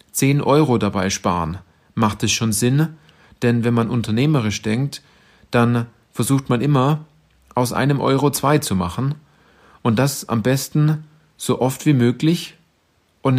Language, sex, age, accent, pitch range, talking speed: German, male, 40-59, German, 105-130 Hz, 145 wpm